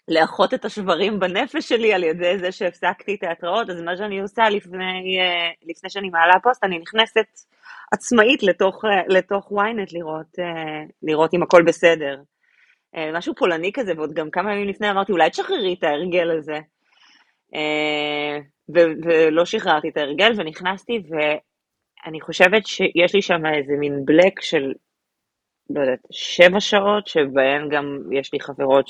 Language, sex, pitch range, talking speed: Hebrew, female, 150-200 Hz, 135 wpm